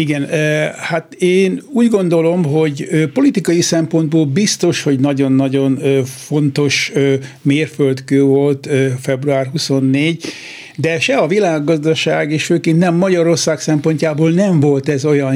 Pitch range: 145-170 Hz